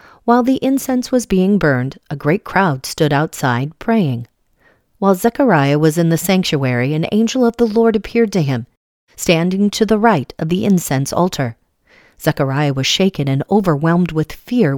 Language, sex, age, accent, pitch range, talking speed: English, female, 40-59, American, 145-210 Hz, 165 wpm